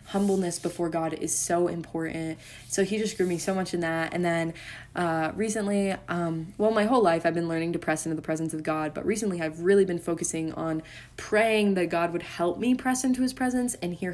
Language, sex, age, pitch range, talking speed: English, female, 10-29, 160-185 Hz, 225 wpm